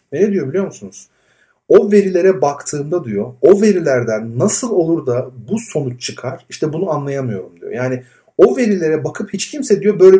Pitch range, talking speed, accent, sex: 130-195 Hz, 165 wpm, native, male